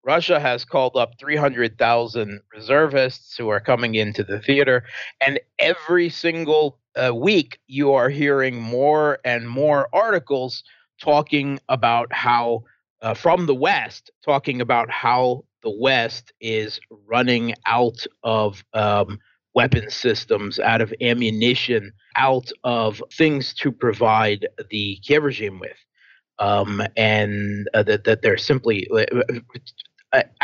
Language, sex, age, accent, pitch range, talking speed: English, male, 30-49, American, 115-140 Hz, 125 wpm